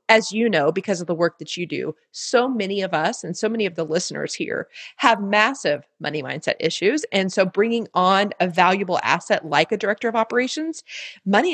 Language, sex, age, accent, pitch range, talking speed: English, female, 30-49, American, 175-225 Hz, 205 wpm